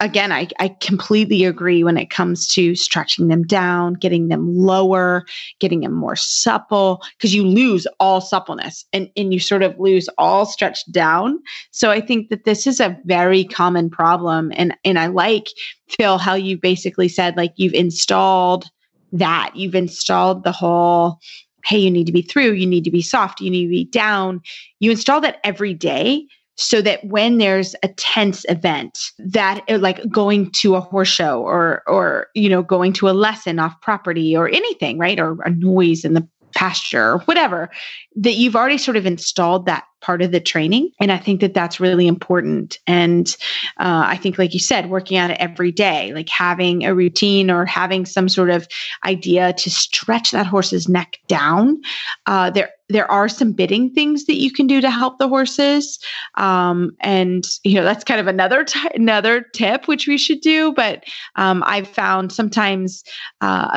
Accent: American